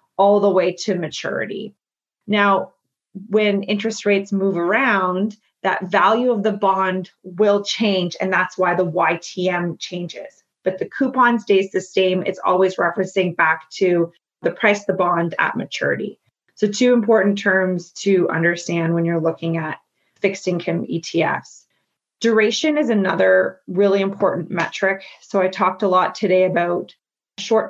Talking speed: 150 wpm